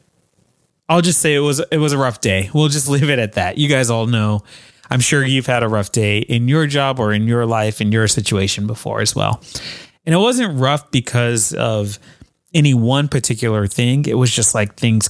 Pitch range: 120-155 Hz